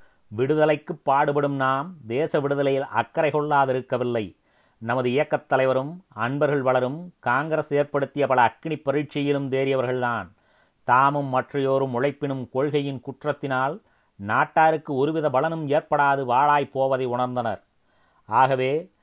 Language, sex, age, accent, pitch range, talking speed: Tamil, male, 30-49, native, 125-145 Hz, 100 wpm